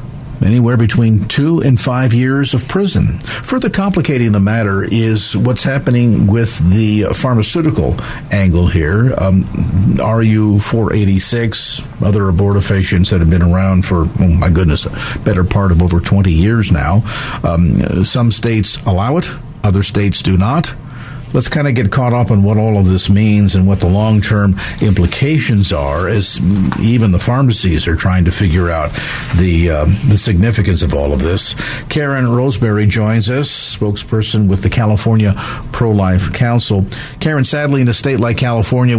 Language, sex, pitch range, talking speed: English, male, 95-125 Hz, 155 wpm